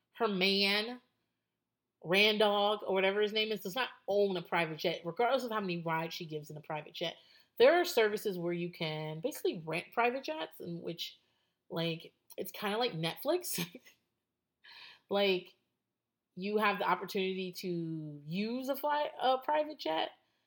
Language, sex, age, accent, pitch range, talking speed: English, female, 30-49, American, 165-225 Hz, 160 wpm